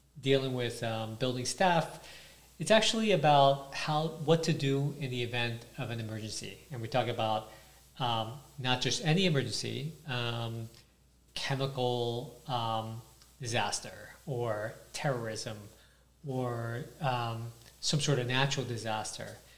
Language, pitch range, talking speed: English, 115-140 Hz, 125 wpm